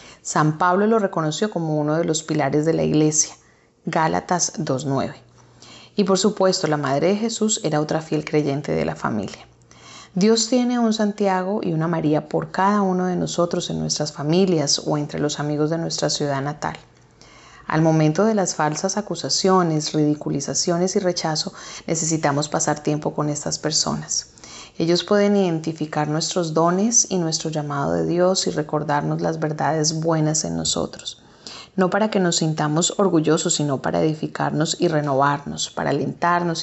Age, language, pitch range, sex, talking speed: 30-49, English, 150-185 Hz, female, 155 wpm